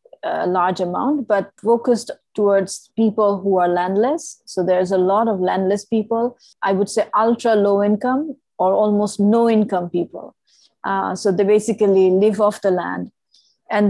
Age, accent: 30-49, Indian